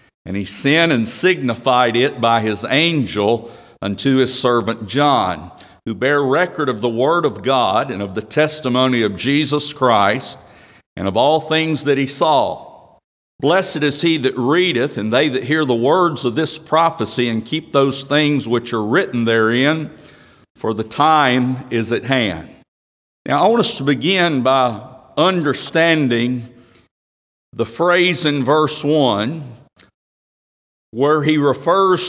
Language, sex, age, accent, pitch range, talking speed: English, male, 50-69, American, 115-155 Hz, 150 wpm